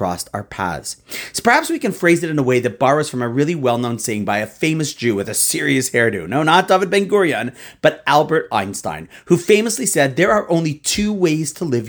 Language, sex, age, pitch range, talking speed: English, male, 30-49, 125-190 Hz, 220 wpm